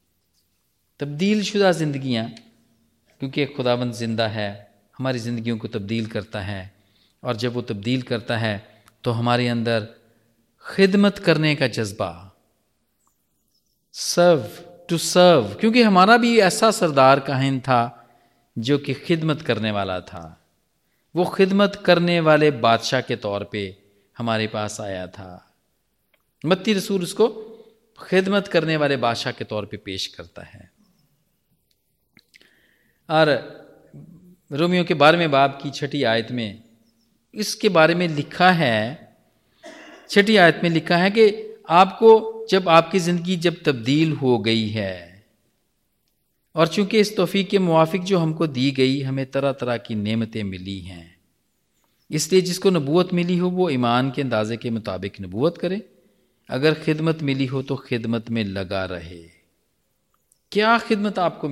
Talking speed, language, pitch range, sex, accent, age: 135 wpm, Hindi, 110-175 Hz, male, native, 40-59